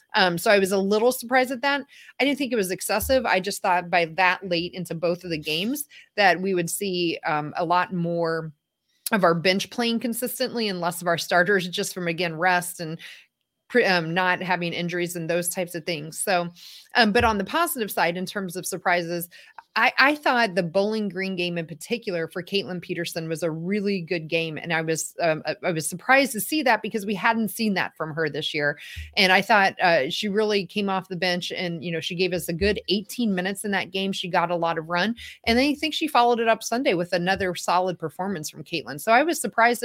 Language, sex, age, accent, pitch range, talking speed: English, female, 30-49, American, 175-225 Hz, 230 wpm